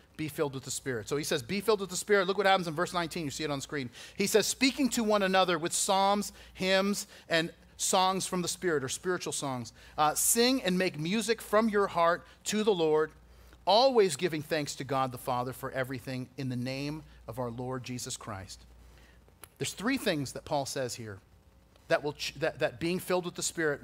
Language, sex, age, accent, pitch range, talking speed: English, male, 40-59, American, 130-195 Hz, 215 wpm